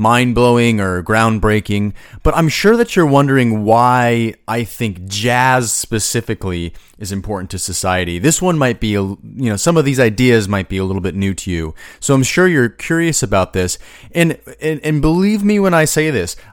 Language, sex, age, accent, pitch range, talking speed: English, male, 30-49, American, 105-145 Hz, 195 wpm